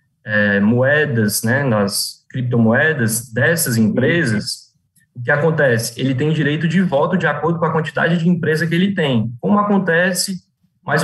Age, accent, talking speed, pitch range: 20-39, Brazilian, 145 wpm, 120-170 Hz